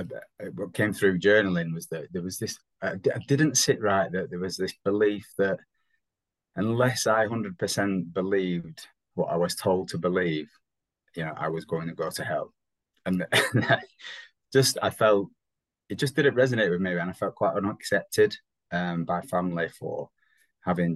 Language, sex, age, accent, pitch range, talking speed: English, male, 20-39, British, 85-105 Hz, 170 wpm